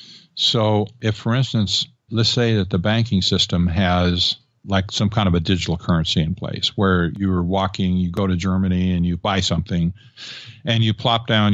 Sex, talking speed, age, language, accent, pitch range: male, 180 wpm, 50-69, English, American, 95-120 Hz